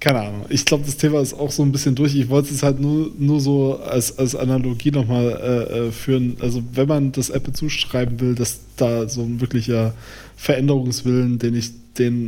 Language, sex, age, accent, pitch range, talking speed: German, male, 20-39, German, 115-135 Hz, 200 wpm